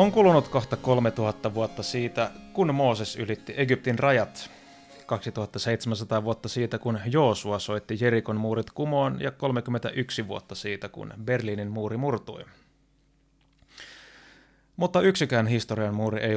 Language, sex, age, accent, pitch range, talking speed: Finnish, male, 30-49, native, 105-130 Hz, 120 wpm